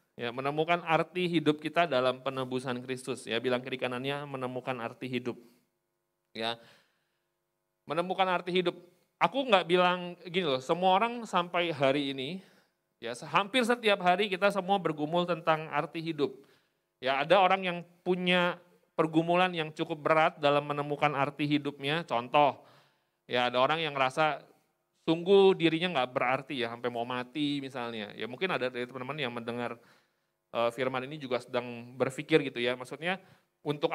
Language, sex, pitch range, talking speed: Indonesian, male, 135-180 Hz, 145 wpm